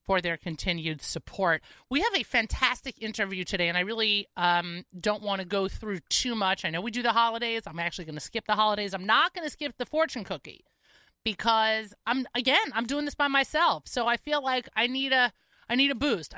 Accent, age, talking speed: American, 30-49, 225 wpm